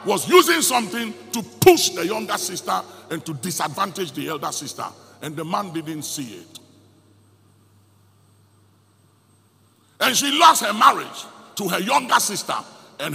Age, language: 60-79, English